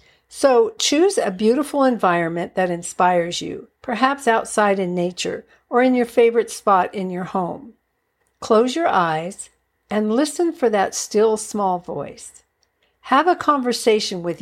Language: English